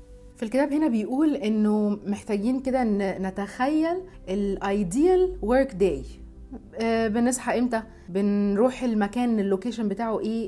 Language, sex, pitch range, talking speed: Arabic, female, 210-290 Hz, 95 wpm